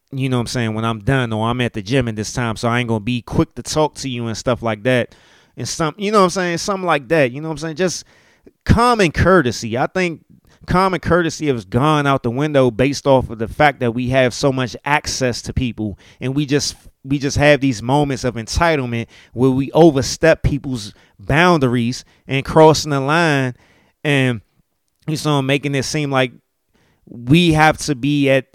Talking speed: 215 wpm